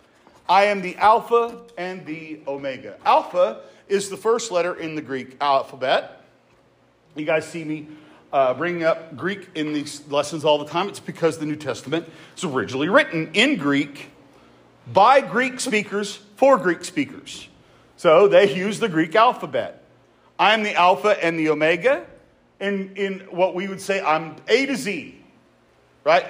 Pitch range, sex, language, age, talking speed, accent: 160-230 Hz, male, English, 50-69, 160 wpm, American